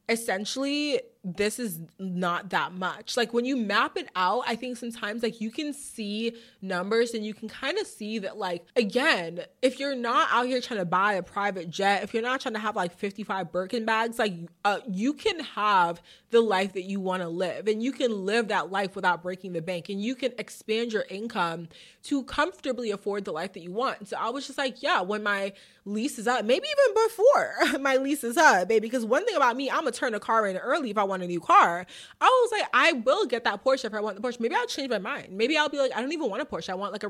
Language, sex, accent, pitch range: English, female, American, 195-260 Hz